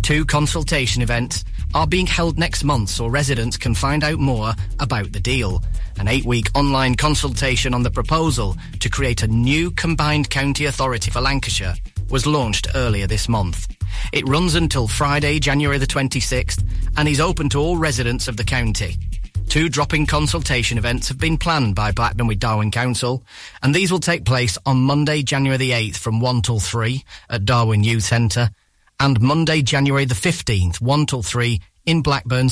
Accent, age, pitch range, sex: British, 30-49, 110-140 Hz, male